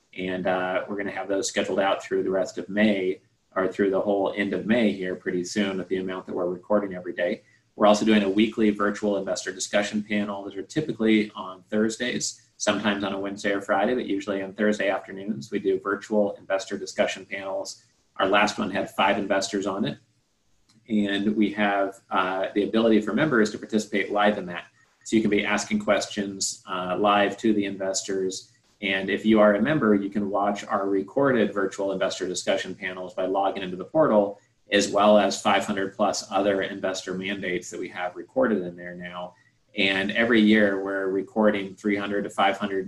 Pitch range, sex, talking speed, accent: 95-105 Hz, male, 195 wpm, American